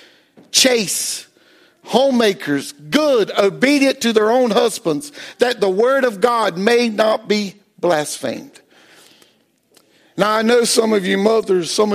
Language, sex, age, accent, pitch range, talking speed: English, male, 50-69, American, 195-255 Hz, 125 wpm